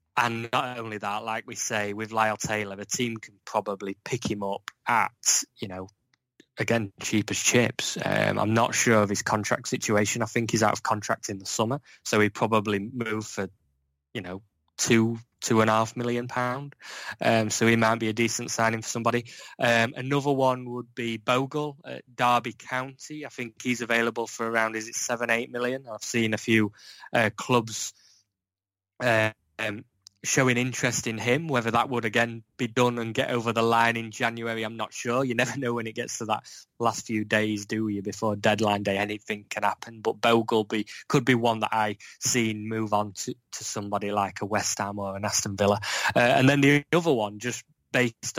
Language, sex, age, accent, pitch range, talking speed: English, male, 20-39, British, 105-120 Hz, 200 wpm